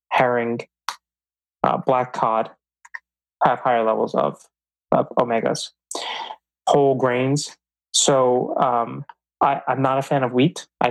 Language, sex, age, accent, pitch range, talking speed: English, male, 20-39, American, 120-140 Hz, 120 wpm